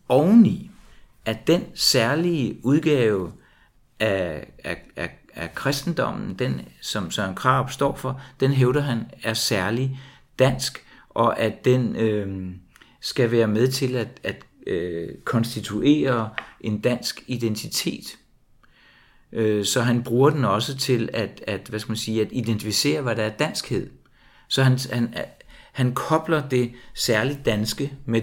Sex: male